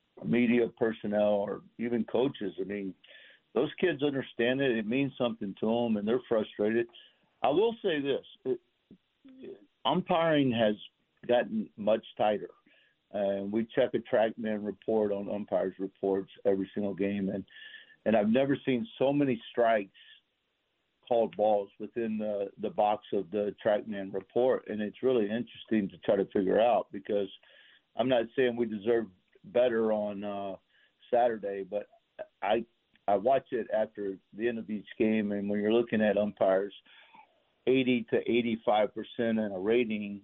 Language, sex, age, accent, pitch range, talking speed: English, male, 50-69, American, 100-125 Hz, 155 wpm